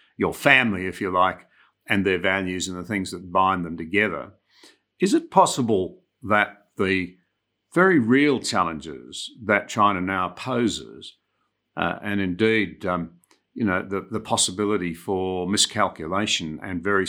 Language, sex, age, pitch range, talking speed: English, male, 50-69, 90-110 Hz, 140 wpm